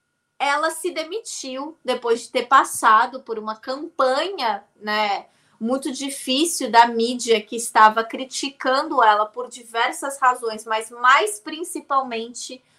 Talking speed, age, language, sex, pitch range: 115 wpm, 20-39, Portuguese, female, 230-290 Hz